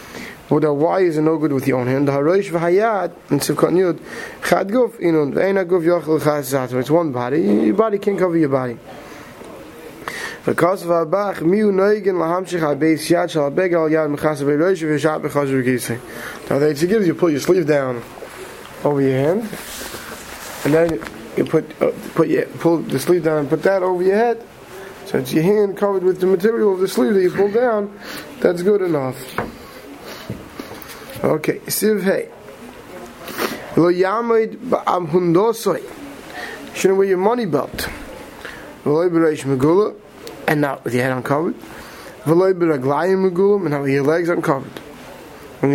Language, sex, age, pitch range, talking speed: English, male, 20-39, 145-185 Hz, 155 wpm